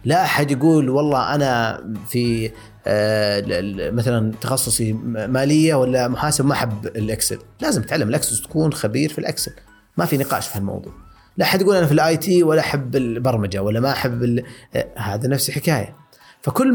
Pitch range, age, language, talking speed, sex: 115-150 Hz, 30-49, Arabic, 160 wpm, male